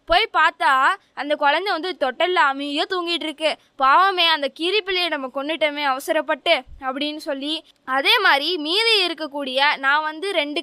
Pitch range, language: 280-350 Hz, Tamil